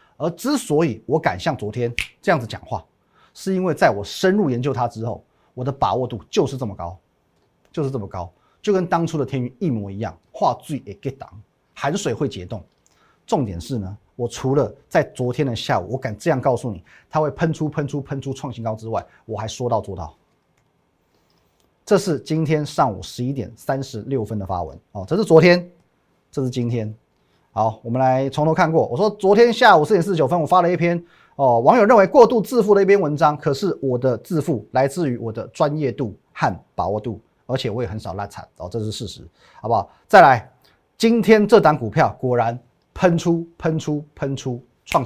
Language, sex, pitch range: Chinese, male, 115-160 Hz